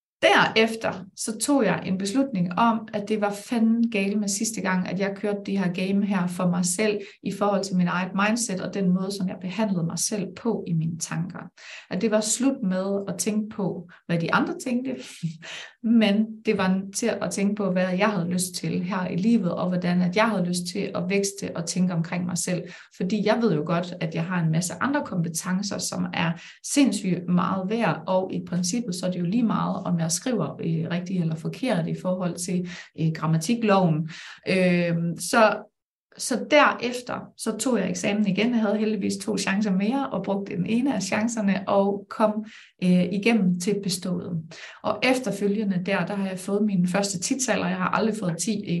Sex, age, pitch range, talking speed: female, 30-49, 180-215 Hz, 200 wpm